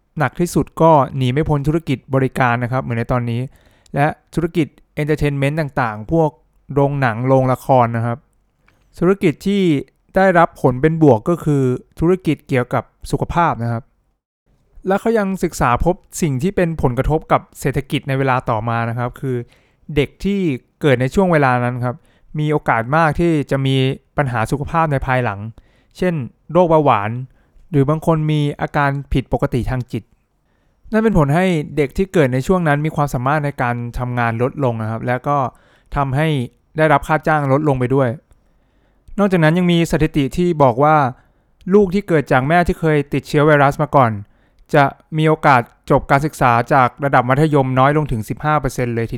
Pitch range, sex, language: 125-160 Hz, male, English